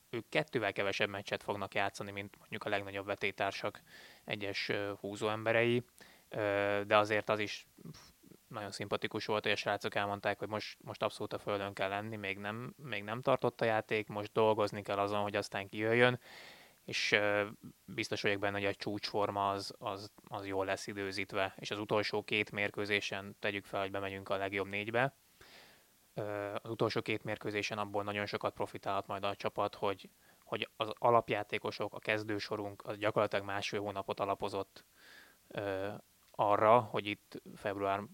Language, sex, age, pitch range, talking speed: Hungarian, male, 20-39, 100-105 Hz, 155 wpm